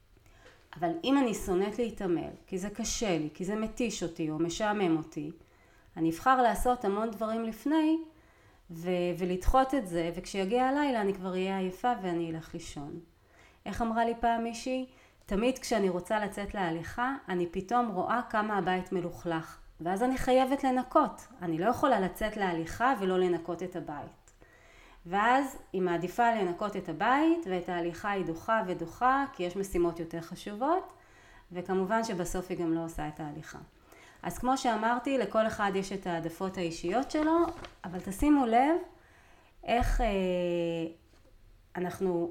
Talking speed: 145 wpm